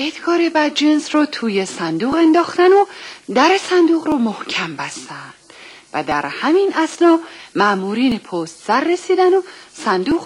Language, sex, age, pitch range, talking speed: Persian, female, 40-59, 190-315 Hz, 130 wpm